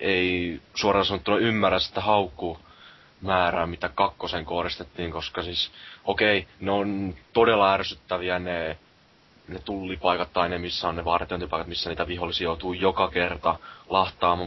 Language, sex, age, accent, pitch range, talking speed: Finnish, male, 20-39, native, 85-95 Hz, 135 wpm